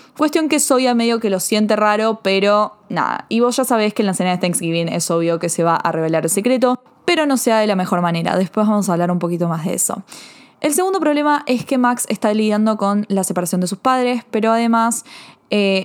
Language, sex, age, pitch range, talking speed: Spanish, female, 20-39, 180-225 Hz, 240 wpm